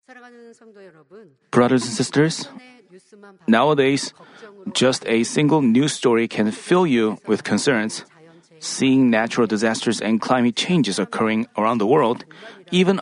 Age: 30-49